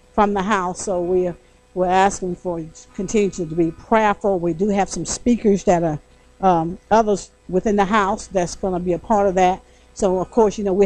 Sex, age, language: female, 60-79, English